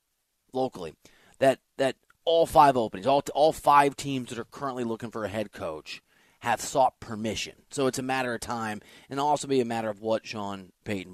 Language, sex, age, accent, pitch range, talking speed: English, male, 30-49, American, 115-155 Hz, 195 wpm